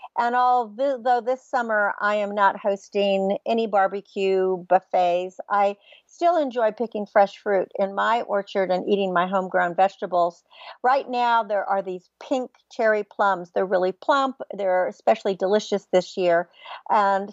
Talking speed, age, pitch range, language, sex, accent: 145 wpm, 50-69, 200-255 Hz, English, female, American